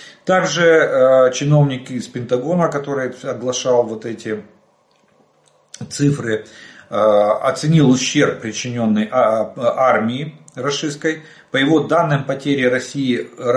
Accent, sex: native, male